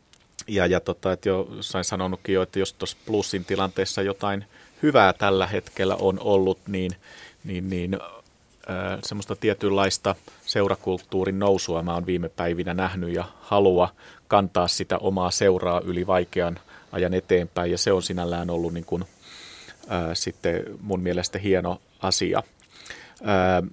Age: 30-49